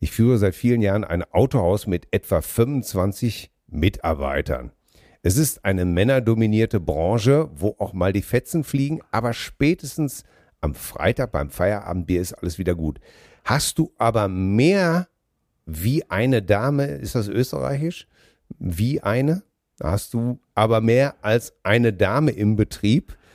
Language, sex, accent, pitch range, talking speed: German, male, German, 95-140 Hz, 135 wpm